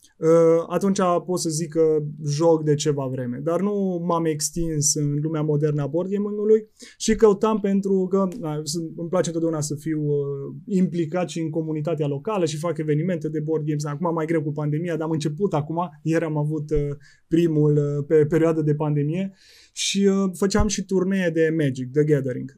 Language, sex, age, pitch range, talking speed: Romanian, male, 20-39, 150-195 Hz, 175 wpm